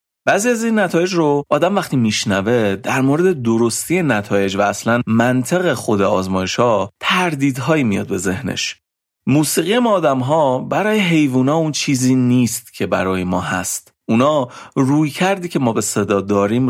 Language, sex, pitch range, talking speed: Persian, male, 105-170 Hz, 155 wpm